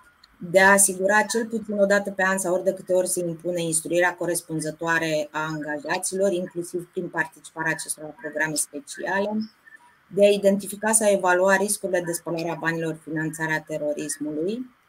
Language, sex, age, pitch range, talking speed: Romanian, female, 20-39, 160-190 Hz, 150 wpm